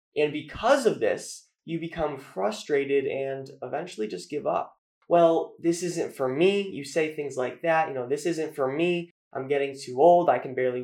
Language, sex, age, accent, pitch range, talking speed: English, male, 20-39, American, 140-190 Hz, 195 wpm